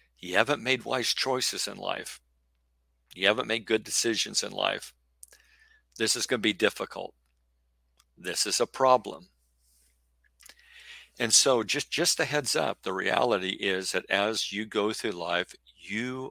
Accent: American